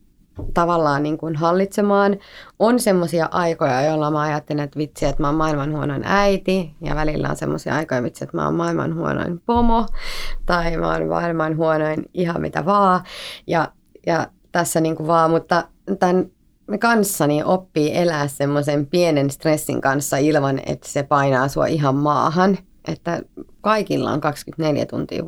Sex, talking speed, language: female, 150 wpm, Finnish